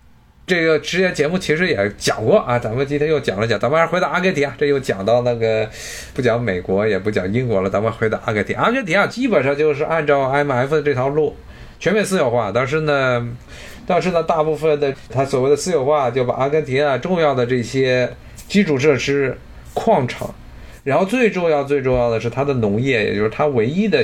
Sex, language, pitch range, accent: male, Chinese, 115-150 Hz, native